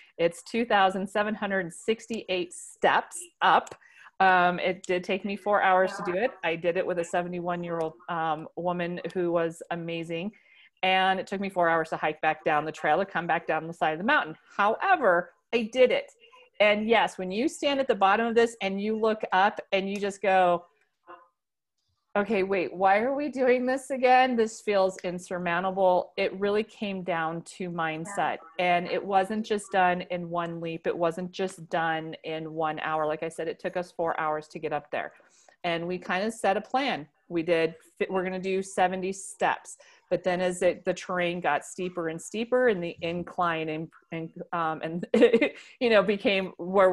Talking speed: 185 wpm